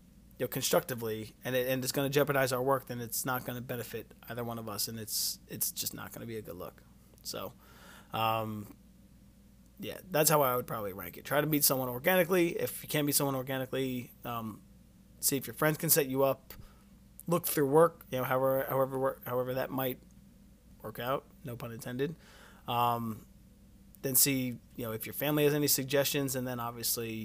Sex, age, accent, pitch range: male, 30-49, American, 120-145 Hz